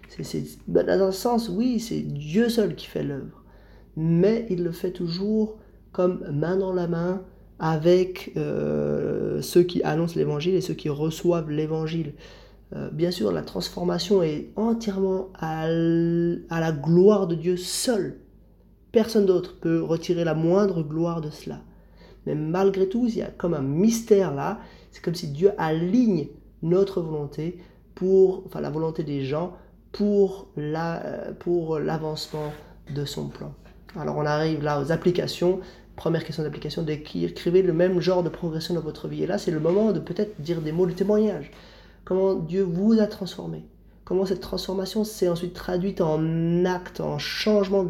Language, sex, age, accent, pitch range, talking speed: French, male, 30-49, French, 155-190 Hz, 165 wpm